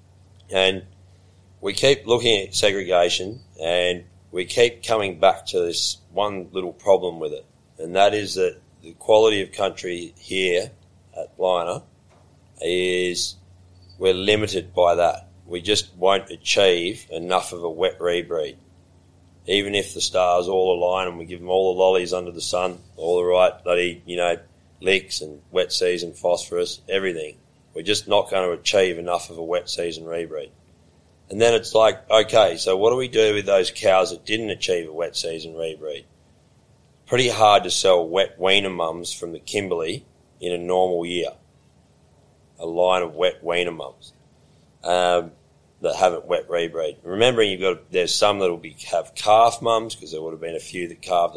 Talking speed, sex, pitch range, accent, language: 175 wpm, male, 90-115 Hz, Australian, English